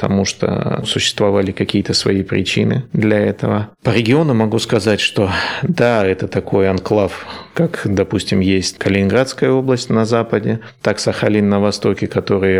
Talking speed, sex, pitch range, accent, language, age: 145 wpm, male, 95-105 Hz, native, Russian, 30-49